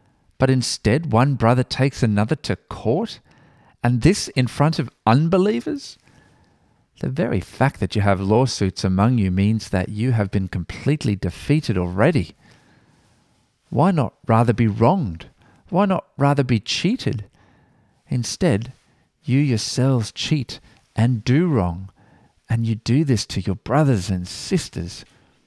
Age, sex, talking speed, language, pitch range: 40-59, male, 135 wpm, English, 100-130 Hz